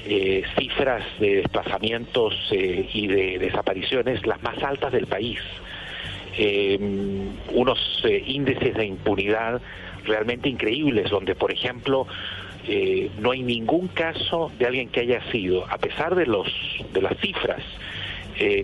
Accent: Mexican